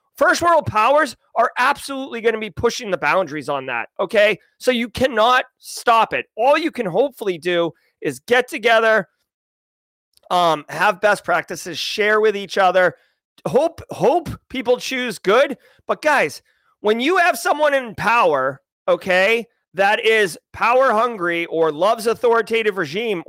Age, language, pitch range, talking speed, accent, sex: 30-49, English, 190-275 Hz, 145 wpm, American, male